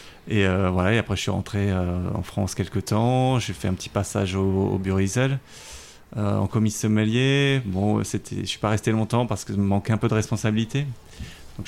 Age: 30-49